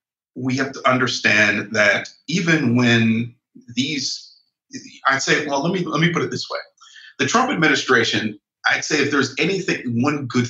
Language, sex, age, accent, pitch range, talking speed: English, male, 40-59, American, 120-165 Hz, 170 wpm